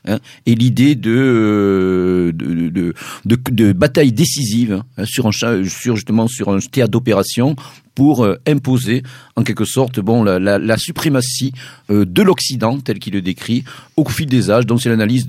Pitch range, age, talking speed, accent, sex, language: 110-140 Hz, 50-69, 160 wpm, French, male, French